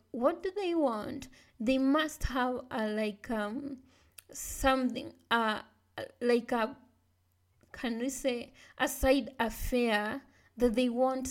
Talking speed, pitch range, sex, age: 120 wpm, 220-255 Hz, female, 20-39